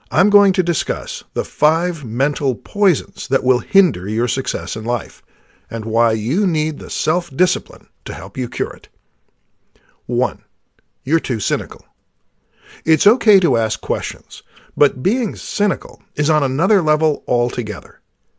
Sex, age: male, 50-69